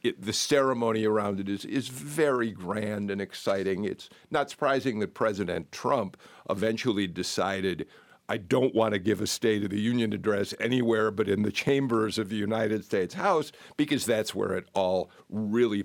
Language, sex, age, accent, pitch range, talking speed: English, male, 50-69, American, 100-130 Hz, 175 wpm